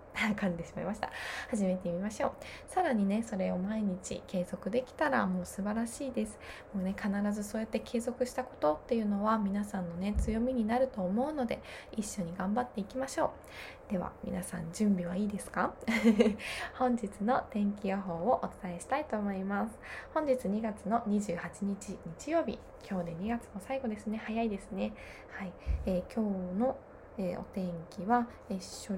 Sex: female